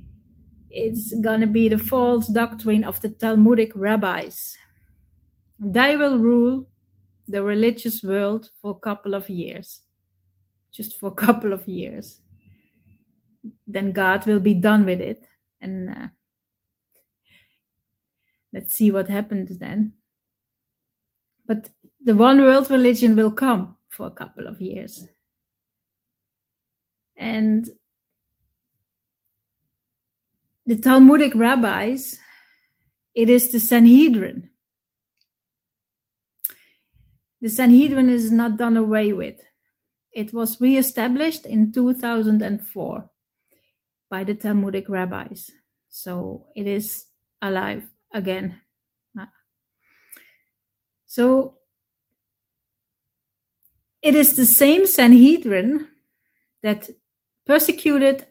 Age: 30-49